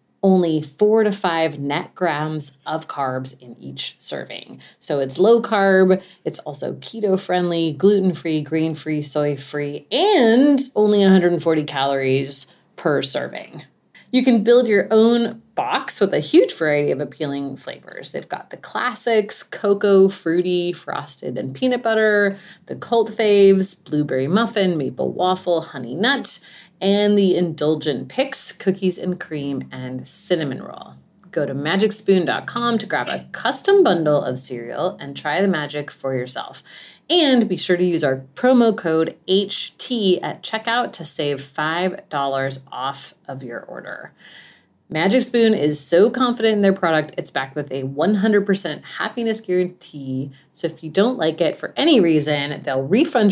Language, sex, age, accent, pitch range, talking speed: English, female, 30-49, American, 145-210 Hz, 145 wpm